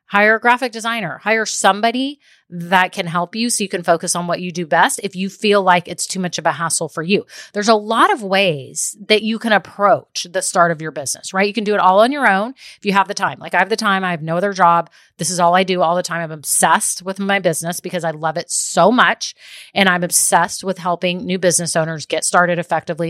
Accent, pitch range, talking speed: American, 175-210 Hz, 255 wpm